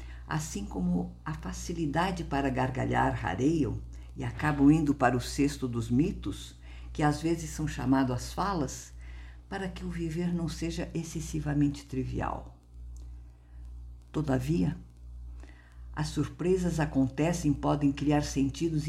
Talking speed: 120 wpm